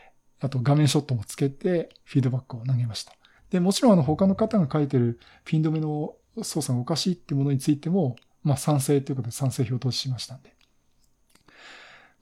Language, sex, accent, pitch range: Japanese, male, native, 130-165 Hz